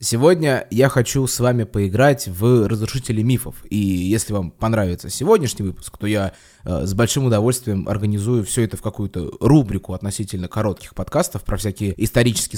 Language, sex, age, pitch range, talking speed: Russian, male, 20-39, 100-130 Hz, 155 wpm